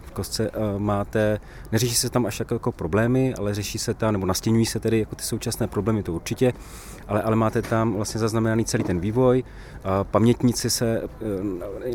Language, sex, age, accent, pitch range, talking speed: Czech, male, 30-49, native, 105-120 Hz, 170 wpm